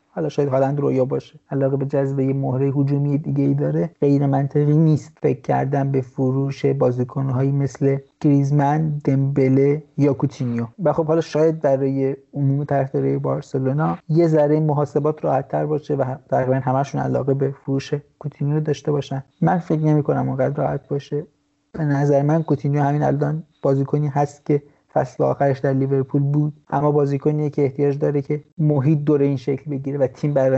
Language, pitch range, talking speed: Persian, 135-150 Hz, 165 wpm